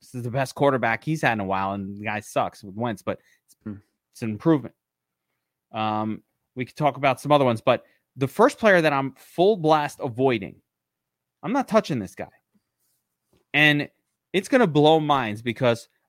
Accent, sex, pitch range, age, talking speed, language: American, male, 125-180 Hz, 20-39, 185 wpm, English